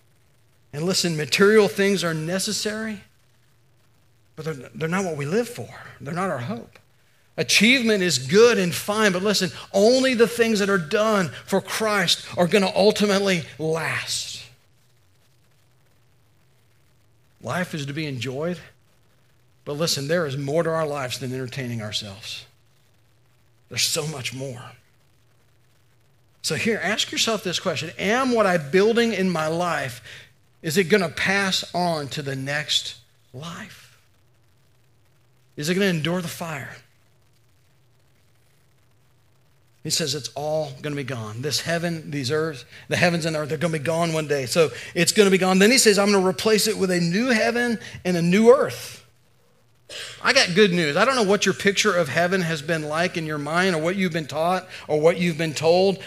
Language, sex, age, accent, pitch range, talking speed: English, male, 50-69, American, 125-185 Hz, 170 wpm